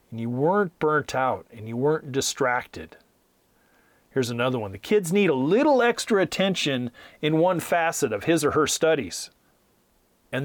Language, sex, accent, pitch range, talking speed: English, male, American, 110-150 Hz, 155 wpm